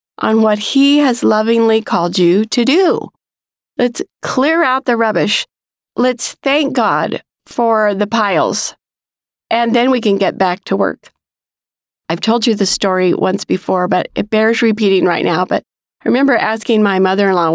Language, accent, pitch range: English, American, 205-250 Hz